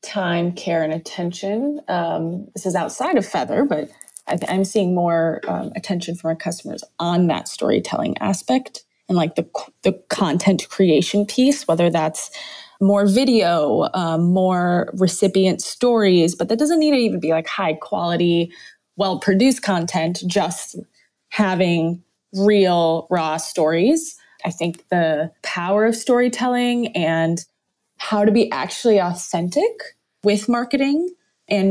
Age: 20-39